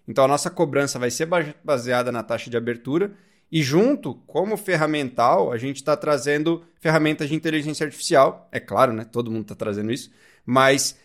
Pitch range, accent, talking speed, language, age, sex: 130-165 Hz, Brazilian, 175 wpm, Portuguese, 20-39, male